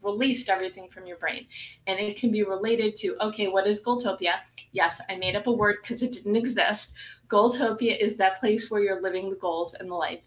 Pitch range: 200-240 Hz